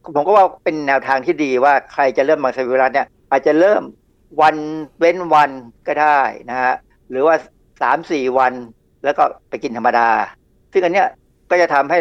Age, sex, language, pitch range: 60-79, male, Thai, 130-170 Hz